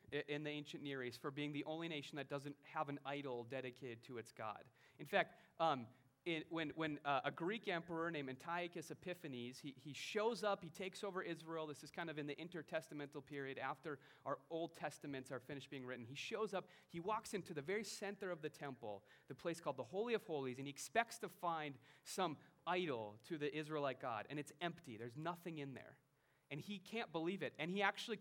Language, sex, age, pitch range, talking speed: English, male, 30-49, 135-175 Hz, 215 wpm